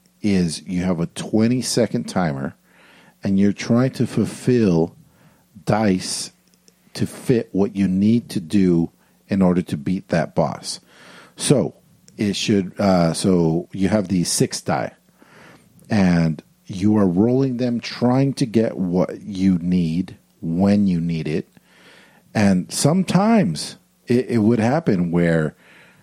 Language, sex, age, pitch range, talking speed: English, male, 50-69, 95-125 Hz, 135 wpm